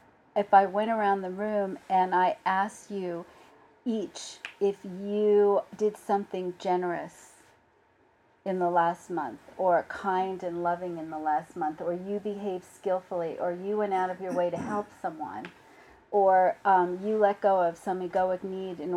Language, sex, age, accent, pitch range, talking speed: English, female, 40-59, American, 155-205 Hz, 165 wpm